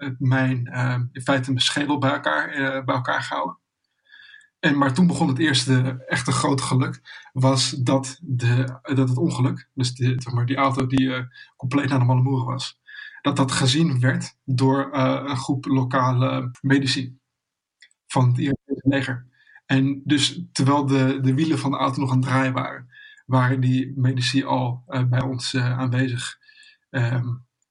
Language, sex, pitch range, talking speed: Dutch, male, 130-140 Hz, 170 wpm